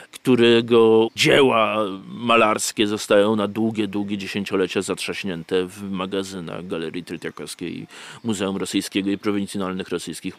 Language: Polish